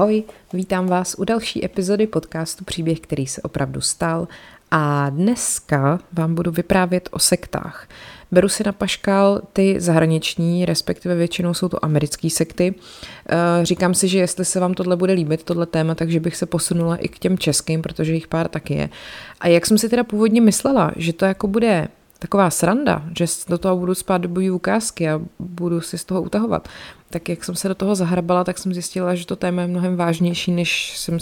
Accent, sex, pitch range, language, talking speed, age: native, female, 160-185 Hz, Czech, 190 wpm, 30-49